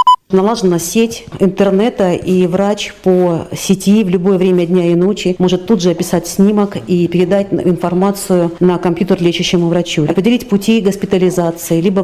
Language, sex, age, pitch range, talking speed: Russian, female, 40-59, 180-225 Hz, 145 wpm